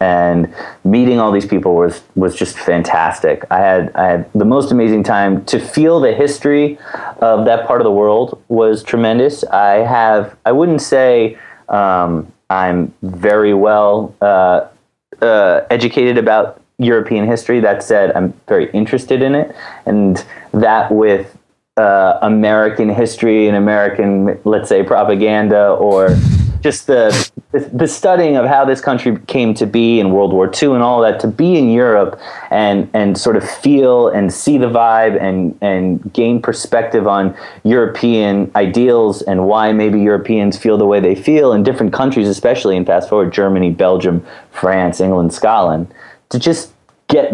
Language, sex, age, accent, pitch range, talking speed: English, male, 30-49, American, 100-120 Hz, 155 wpm